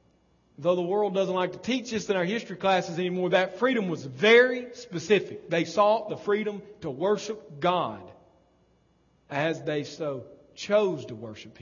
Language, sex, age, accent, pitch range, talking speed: English, male, 40-59, American, 150-205 Hz, 160 wpm